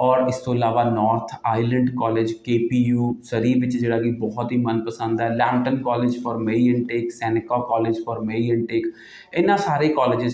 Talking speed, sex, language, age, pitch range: 170 wpm, male, Punjabi, 30-49, 115-140 Hz